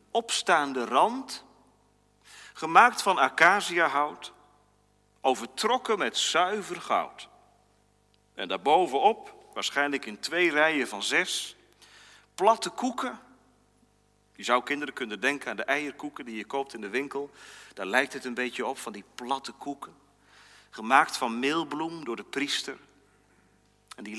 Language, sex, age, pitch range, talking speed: Dutch, male, 40-59, 105-165 Hz, 125 wpm